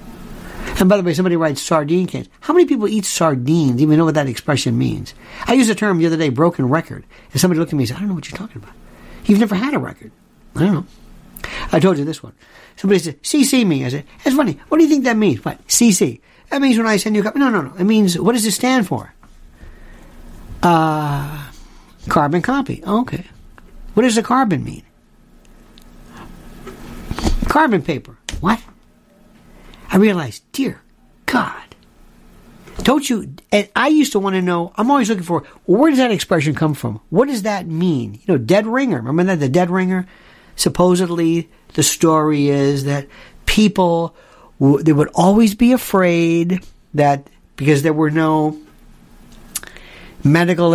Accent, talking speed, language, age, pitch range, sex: American, 180 wpm, English, 60-79, 150-210 Hz, male